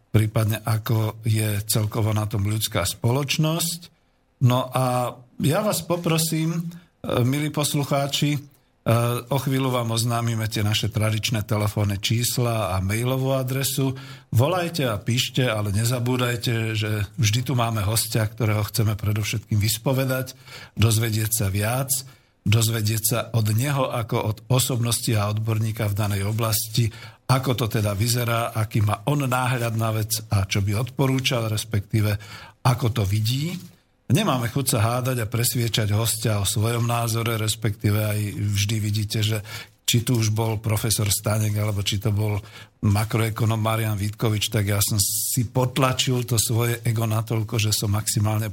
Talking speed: 140 wpm